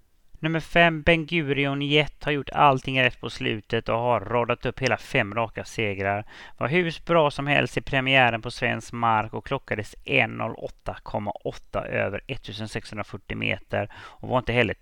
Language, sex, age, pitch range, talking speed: English, male, 30-49, 110-140 Hz, 160 wpm